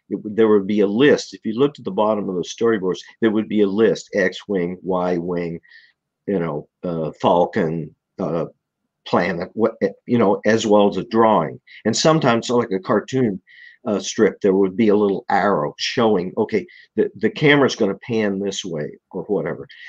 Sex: male